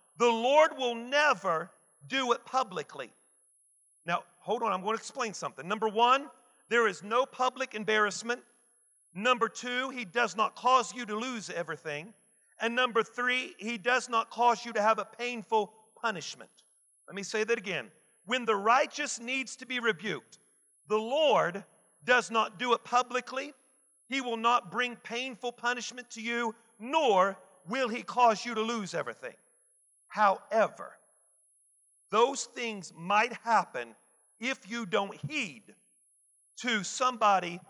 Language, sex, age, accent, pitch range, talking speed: English, male, 50-69, American, 215-250 Hz, 145 wpm